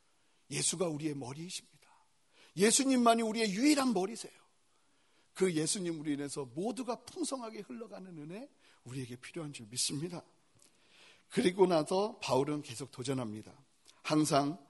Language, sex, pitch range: Korean, male, 135-190 Hz